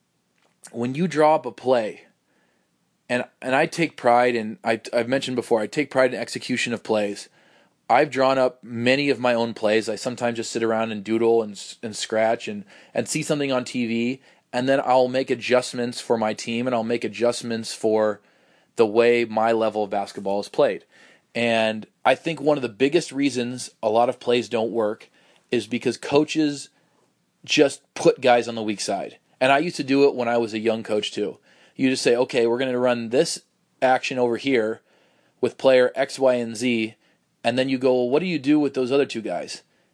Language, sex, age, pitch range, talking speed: English, male, 20-39, 115-135 Hz, 205 wpm